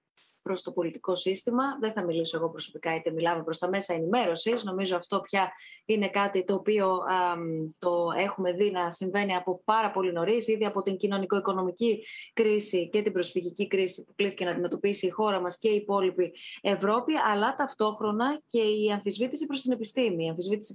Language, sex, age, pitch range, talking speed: Greek, female, 20-39, 180-225 Hz, 180 wpm